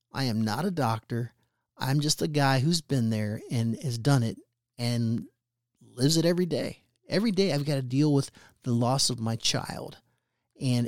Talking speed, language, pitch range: 190 wpm, English, 120-165 Hz